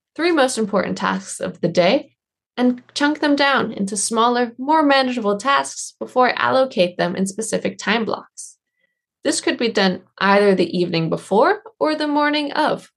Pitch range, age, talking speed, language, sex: 200-280 Hz, 20-39, 165 wpm, English, female